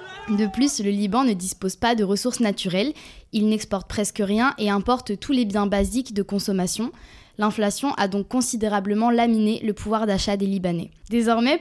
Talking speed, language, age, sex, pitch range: 170 wpm, French, 20-39, female, 200-240 Hz